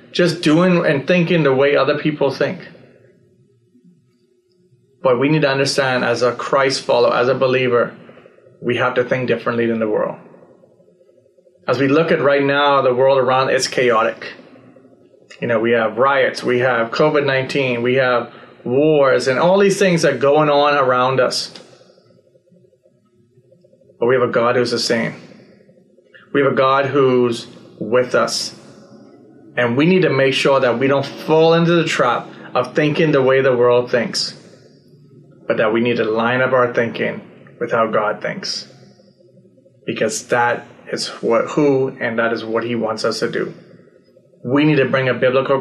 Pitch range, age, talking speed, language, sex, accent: 125-155 Hz, 30-49, 170 wpm, English, male, American